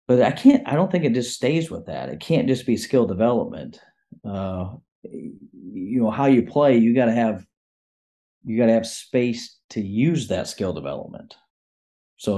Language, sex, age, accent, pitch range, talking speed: English, male, 40-59, American, 100-115 Hz, 185 wpm